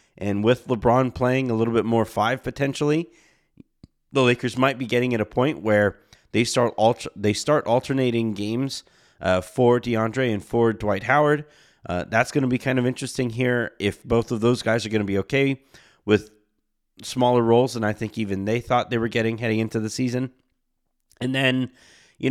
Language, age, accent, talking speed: English, 30-49, American, 190 wpm